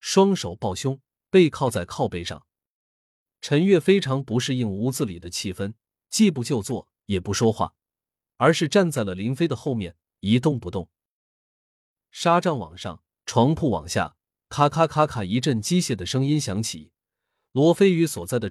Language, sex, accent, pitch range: Chinese, male, native, 95-150 Hz